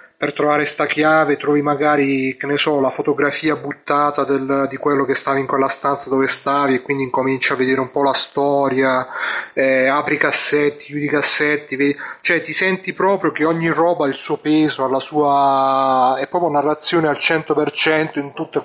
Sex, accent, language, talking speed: male, native, Italian, 200 wpm